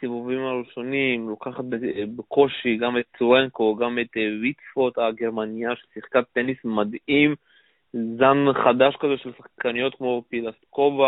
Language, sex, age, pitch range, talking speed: Hebrew, male, 20-39, 120-140 Hz, 115 wpm